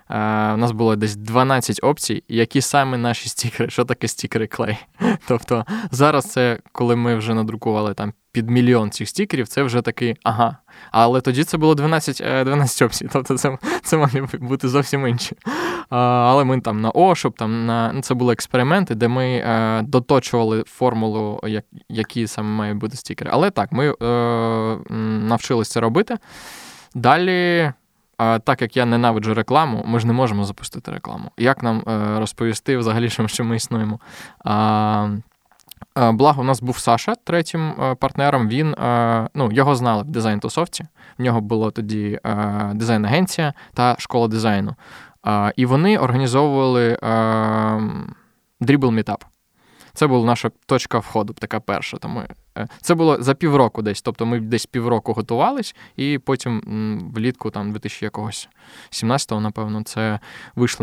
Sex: male